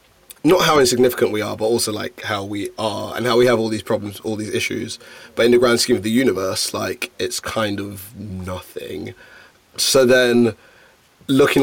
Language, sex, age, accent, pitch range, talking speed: English, male, 20-39, British, 110-125 Hz, 190 wpm